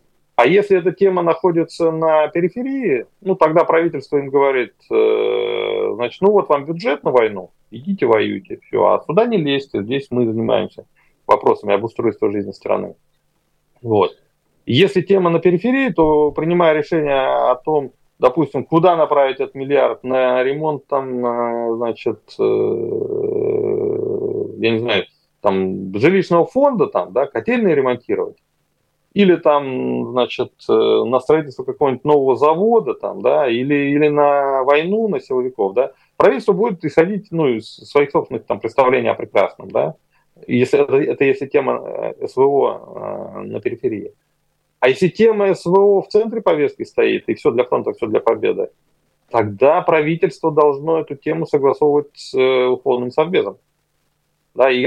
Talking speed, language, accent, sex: 135 wpm, Russian, native, male